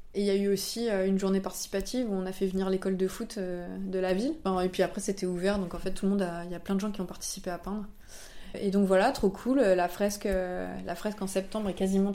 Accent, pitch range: French, 180-200 Hz